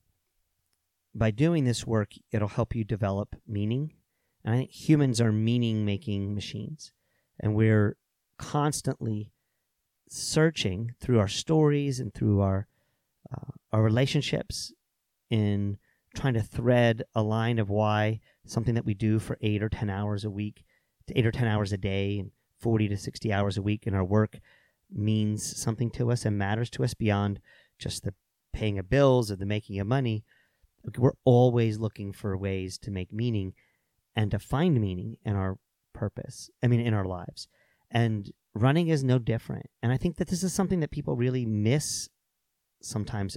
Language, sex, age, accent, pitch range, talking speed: English, male, 40-59, American, 105-125 Hz, 170 wpm